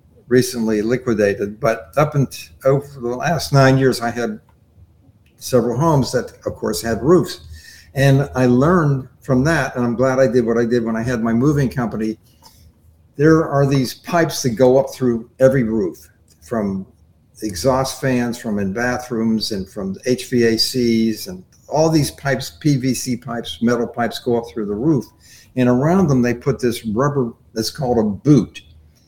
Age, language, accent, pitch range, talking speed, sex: 50-69, English, American, 110-135 Hz, 170 wpm, male